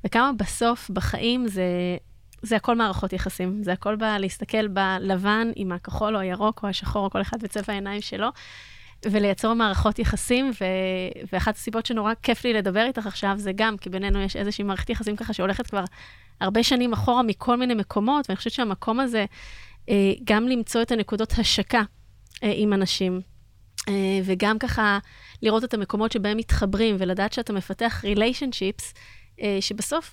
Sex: female